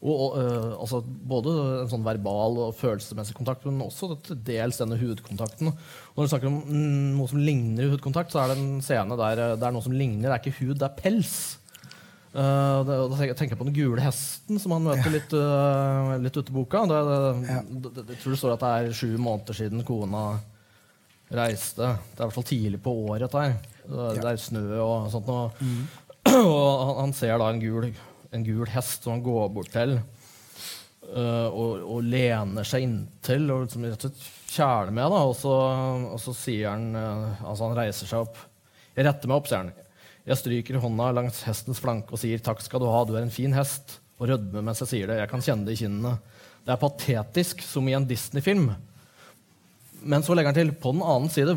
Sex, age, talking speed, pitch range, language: male, 30-49, 200 wpm, 115-140 Hz, English